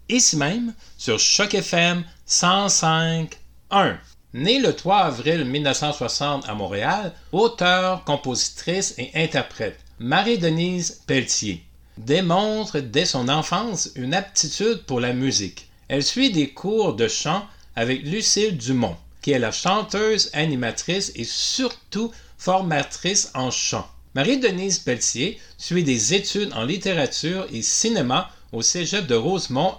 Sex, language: male, French